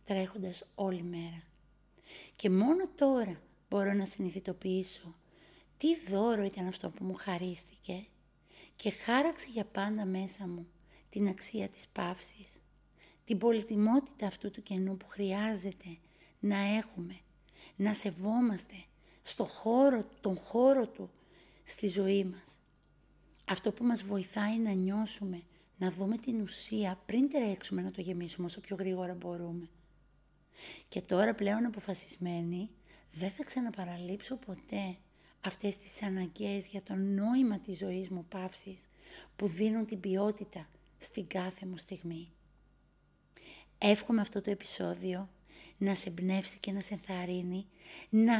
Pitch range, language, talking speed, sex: 185-215 Hz, Greek, 125 wpm, female